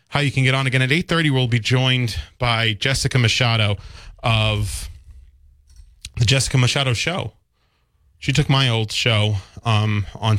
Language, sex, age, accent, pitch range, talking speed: English, male, 20-39, American, 100-120 Hz, 150 wpm